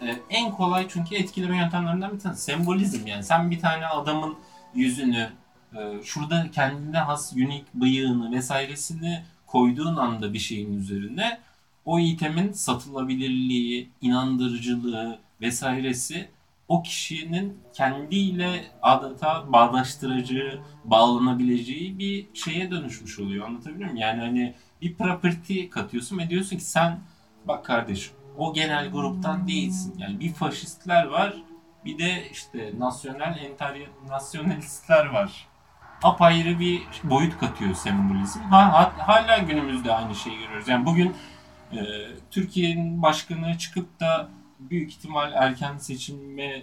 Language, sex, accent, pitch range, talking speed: Turkish, male, native, 130-180 Hz, 115 wpm